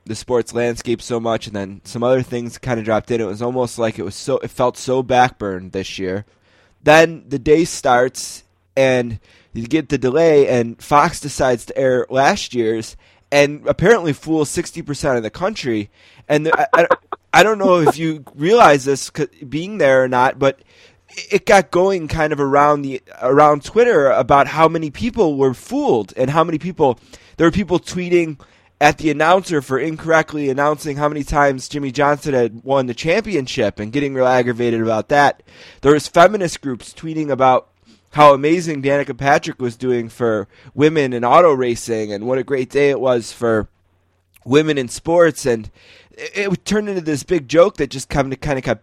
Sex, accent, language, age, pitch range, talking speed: male, American, English, 20-39, 120-155 Hz, 190 wpm